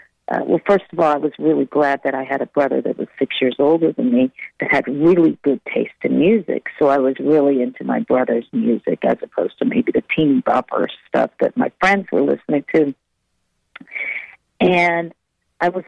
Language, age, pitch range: English, 50-69, 135-175 Hz